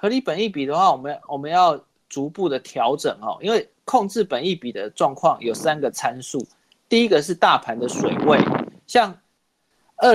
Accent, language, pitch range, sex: native, Chinese, 140-185 Hz, male